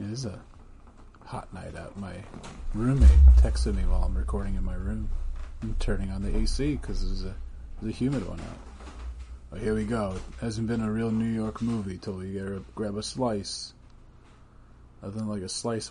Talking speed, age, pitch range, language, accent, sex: 195 wpm, 30-49, 65-110 Hz, English, American, male